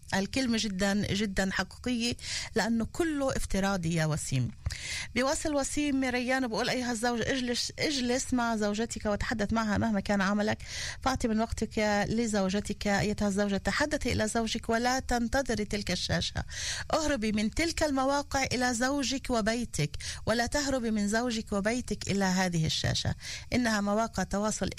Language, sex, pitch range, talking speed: Hebrew, female, 195-240 Hz, 130 wpm